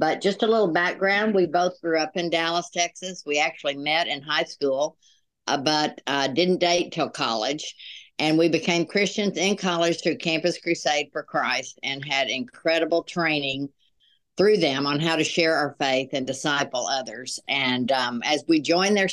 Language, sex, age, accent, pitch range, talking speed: English, female, 60-79, American, 145-175 Hz, 180 wpm